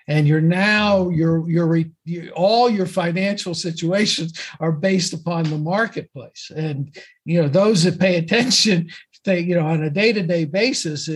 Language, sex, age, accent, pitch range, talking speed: English, male, 50-69, American, 145-175 Hz, 155 wpm